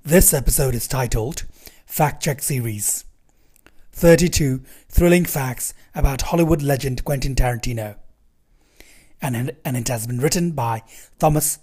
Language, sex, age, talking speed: English, male, 30-49, 115 wpm